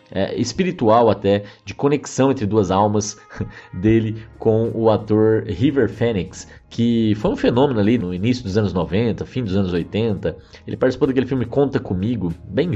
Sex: male